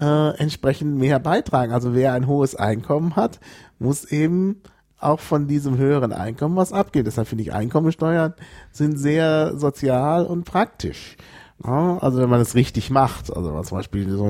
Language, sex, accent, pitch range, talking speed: German, male, German, 115-155 Hz, 170 wpm